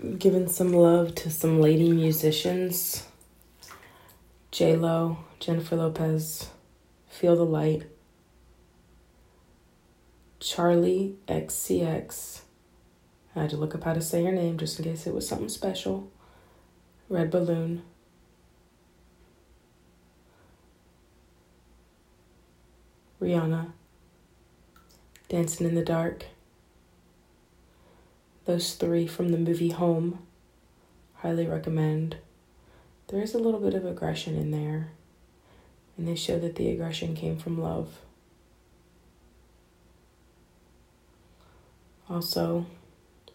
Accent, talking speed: American, 95 wpm